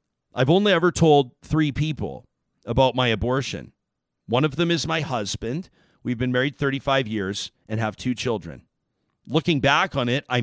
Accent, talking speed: American, 165 wpm